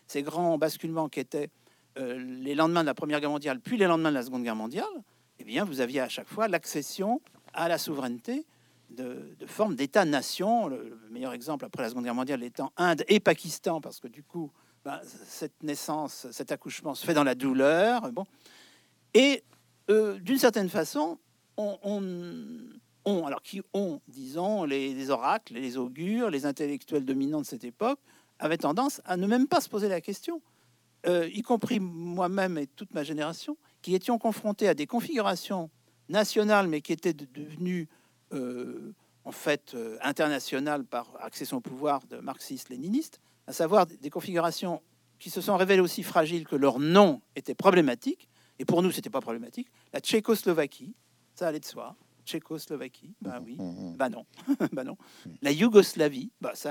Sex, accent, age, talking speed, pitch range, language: male, French, 50-69, 175 wpm, 145-215 Hz, French